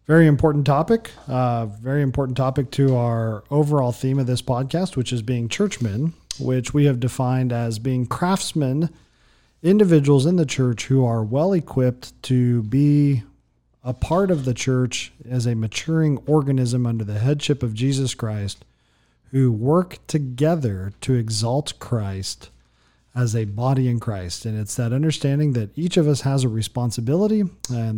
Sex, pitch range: male, 115-145 Hz